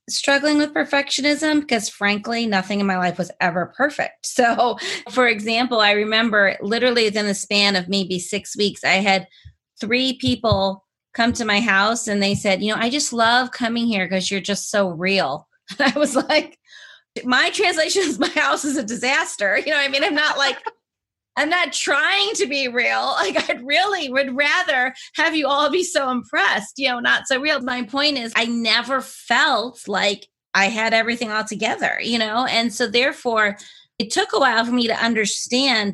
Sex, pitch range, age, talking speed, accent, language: female, 200-275 Hz, 30-49, 195 wpm, American, English